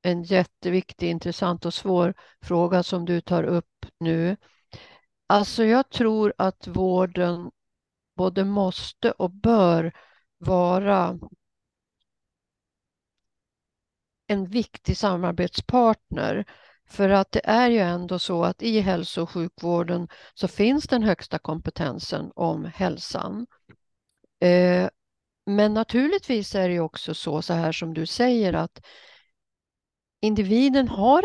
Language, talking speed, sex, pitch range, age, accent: Swedish, 110 wpm, female, 170-225 Hz, 50-69, native